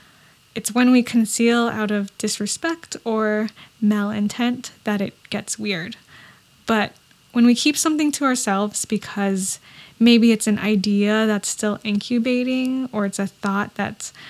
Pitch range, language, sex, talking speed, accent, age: 205-230 Hz, English, female, 140 wpm, American, 10-29